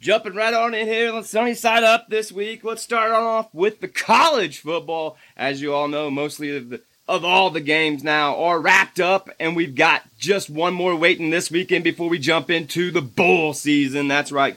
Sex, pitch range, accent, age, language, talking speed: male, 140-170 Hz, American, 30-49, English, 210 wpm